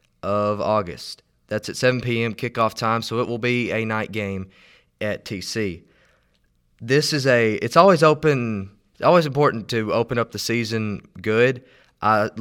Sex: male